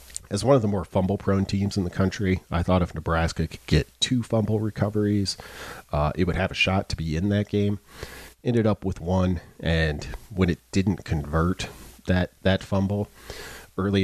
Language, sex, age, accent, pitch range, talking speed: English, male, 40-59, American, 80-100 Hz, 185 wpm